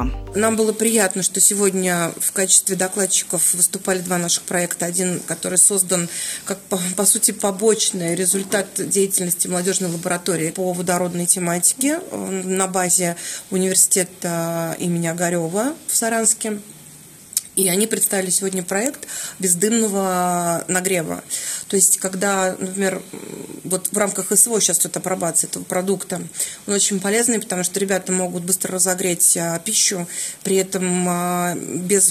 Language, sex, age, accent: Russian, female, 30-49, native